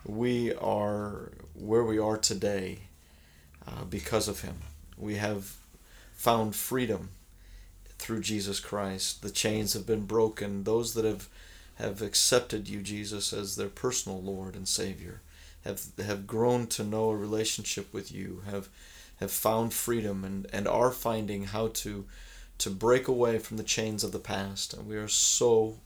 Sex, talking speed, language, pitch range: male, 155 wpm, English, 95-115 Hz